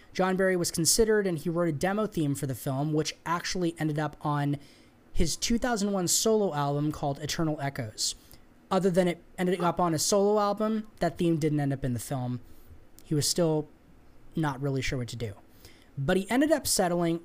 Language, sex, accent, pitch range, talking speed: English, male, American, 140-195 Hz, 195 wpm